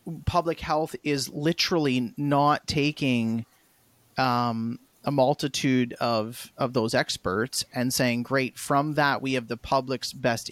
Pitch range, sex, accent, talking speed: 125-155 Hz, male, American, 130 wpm